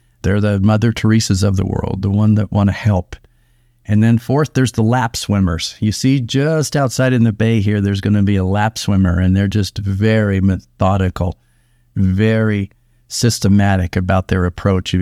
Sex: male